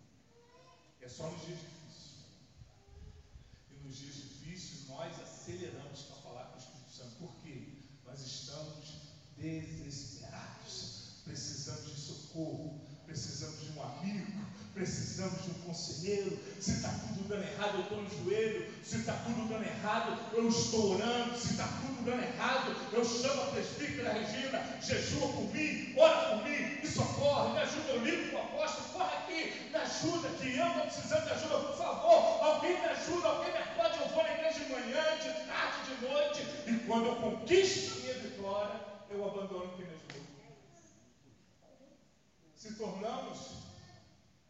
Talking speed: 155 wpm